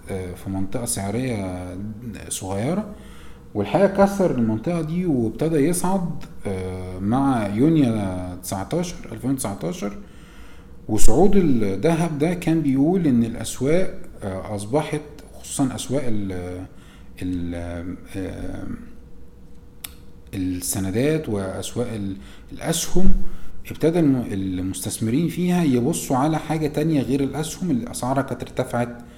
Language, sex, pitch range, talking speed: Arabic, male, 95-155 Hz, 80 wpm